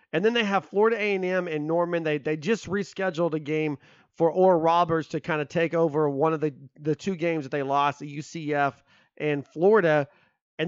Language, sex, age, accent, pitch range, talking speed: English, male, 30-49, American, 155-205 Hz, 210 wpm